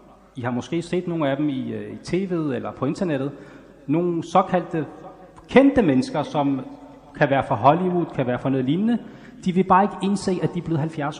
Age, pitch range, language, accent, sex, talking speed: 30-49, 150-200 Hz, Danish, native, male, 200 wpm